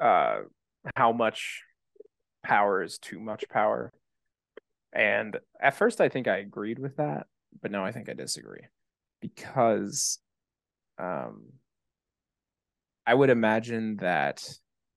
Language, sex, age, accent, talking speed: English, male, 20-39, American, 115 wpm